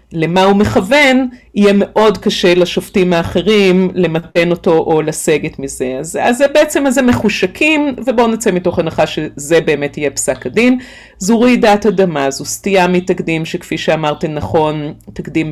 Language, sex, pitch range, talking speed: Hebrew, female, 165-220 Hz, 145 wpm